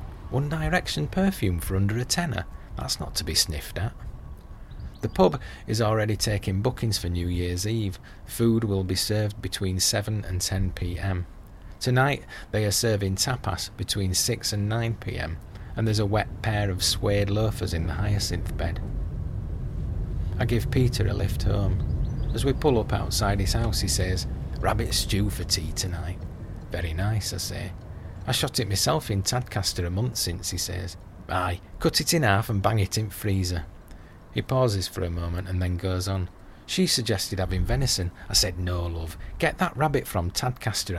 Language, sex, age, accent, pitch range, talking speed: English, male, 40-59, British, 90-110 Hz, 175 wpm